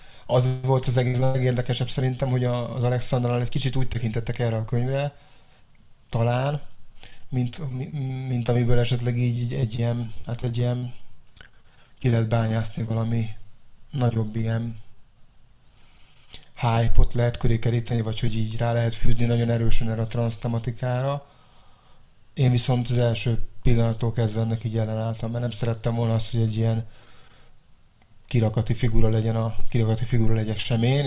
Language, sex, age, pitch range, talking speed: Hungarian, male, 30-49, 115-125 Hz, 140 wpm